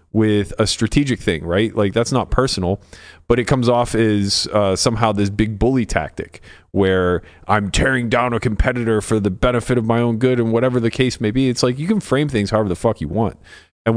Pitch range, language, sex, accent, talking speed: 95-125 Hz, English, male, American, 220 wpm